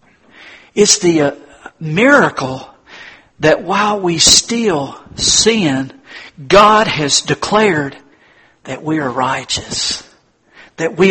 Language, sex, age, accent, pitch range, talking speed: English, male, 50-69, American, 170-245 Hz, 90 wpm